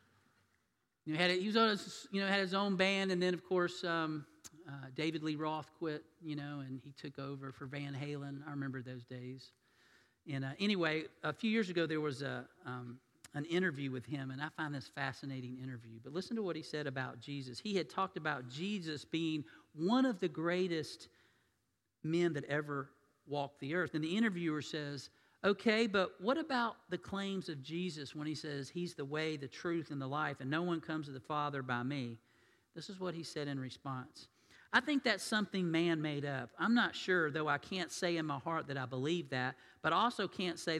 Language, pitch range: English, 140-180 Hz